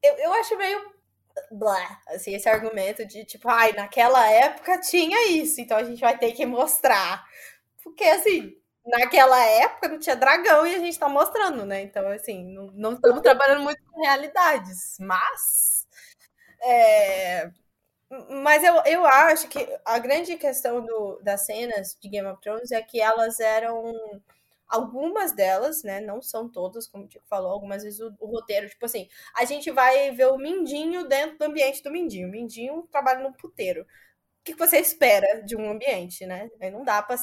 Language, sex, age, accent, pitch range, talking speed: Portuguese, female, 10-29, Brazilian, 215-310 Hz, 175 wpm